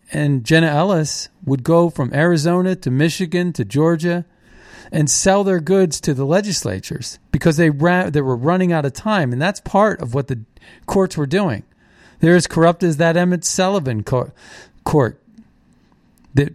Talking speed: 165 wpm